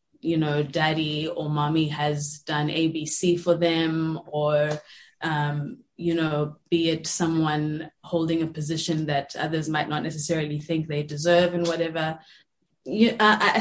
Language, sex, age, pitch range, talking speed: English, female, 20-39, 155-180 Hz, 135 wpm